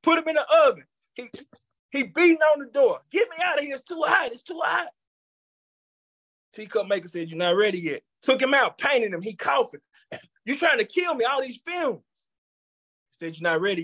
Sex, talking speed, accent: male, 215 wpm, American